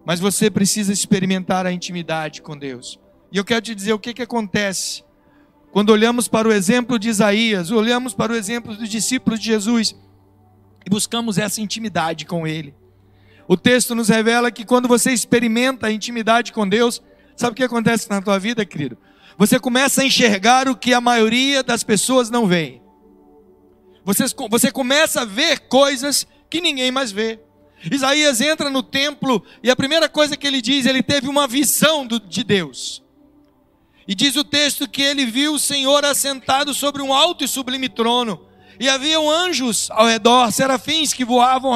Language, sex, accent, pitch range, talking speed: Portuguese, male, Brazilian, 205-270 Hz, 175 wpm